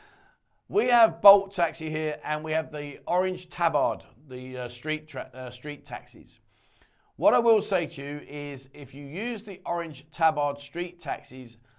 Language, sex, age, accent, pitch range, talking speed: English, male, 40-59, British, 135-185 Hz, 170 wpm